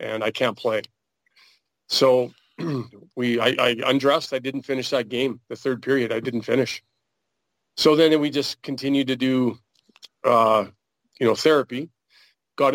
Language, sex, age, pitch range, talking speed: English, male, 40-59, 115-135 Hz, 150 wpm